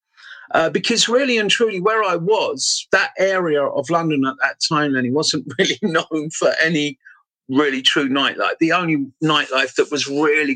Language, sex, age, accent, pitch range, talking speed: English, male, 50-69, British, 140-190 Hz, 170 wpm